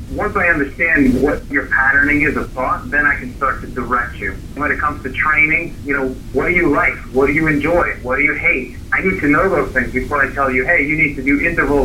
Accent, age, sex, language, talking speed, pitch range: American, 30-49, male, English, 260 wpm, 120-140 Hz